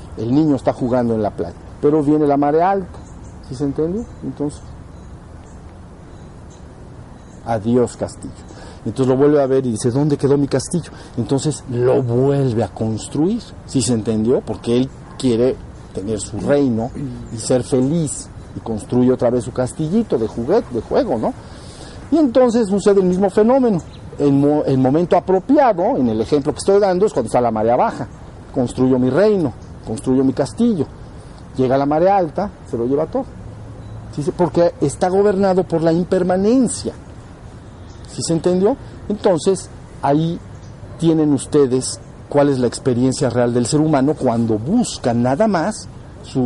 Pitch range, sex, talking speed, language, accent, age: 120-165 Hz, male, 160 wpm, Spanish, Mexican, 50-69